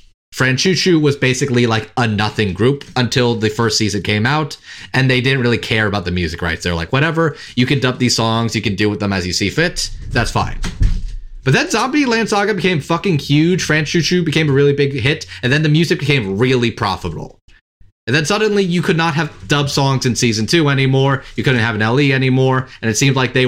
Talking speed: 220 wpm